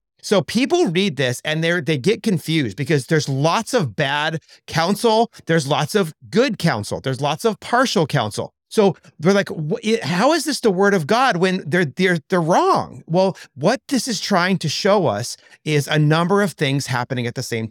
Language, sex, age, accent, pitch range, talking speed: English, male, 40-59, American, 130-185 Hz, 195 wpm